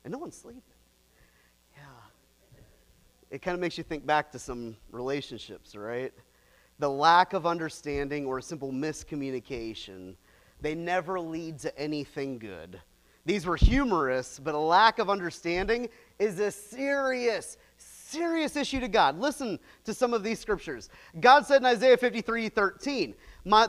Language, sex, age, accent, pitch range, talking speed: English, male, 30-49, American, 170-270 Hz, 145 wpm